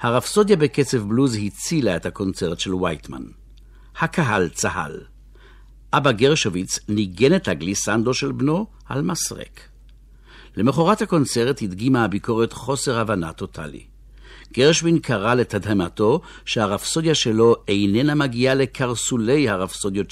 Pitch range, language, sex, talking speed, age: 100-130 Hz, Hebrew, male, 105 wpm, 60-79